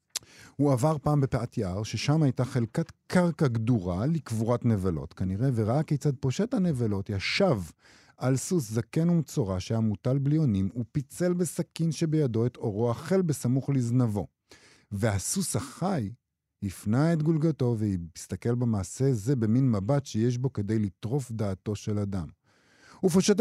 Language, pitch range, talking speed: Hebrew, 105-150 Hz, 130 wpm